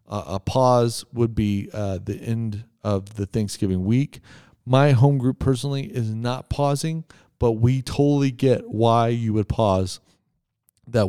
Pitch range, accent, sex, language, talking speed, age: 105-130 Hz, American, male, English, 150 wpm, 40-59